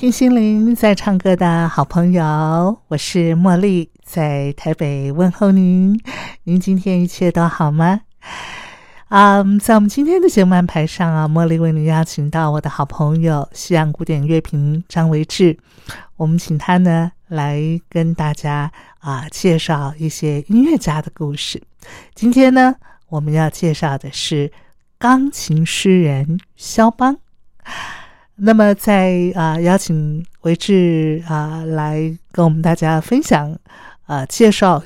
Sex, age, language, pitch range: female, 50-69, Chinese, 155-195 Hz